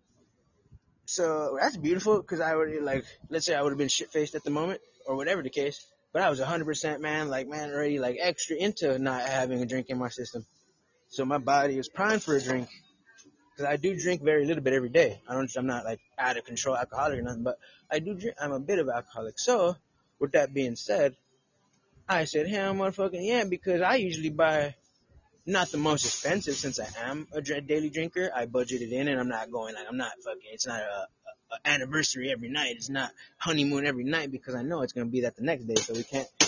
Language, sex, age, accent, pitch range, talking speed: English, male, 20-39, American, 125-165 Hz, 230 wpm